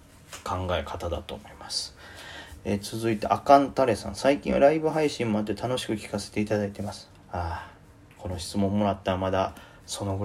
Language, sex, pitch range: Japanese, male, 100-120 Hz